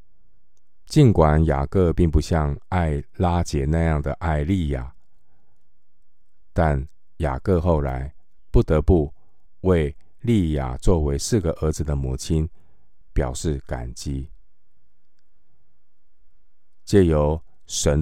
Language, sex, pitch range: Chinese, male, 70-90 Hz